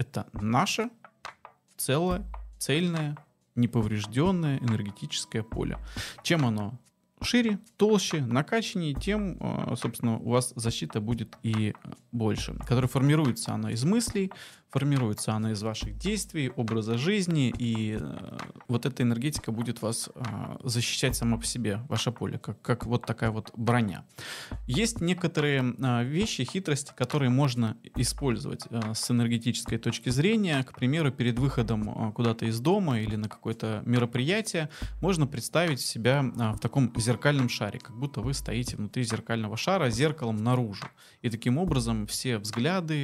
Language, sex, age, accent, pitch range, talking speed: Russian, male, 20-39, native, 110-140 Hz, 130 wpm